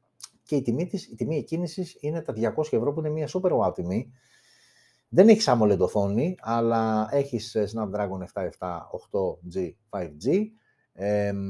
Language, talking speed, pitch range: Greek, 130 wpm, 110-160 Hz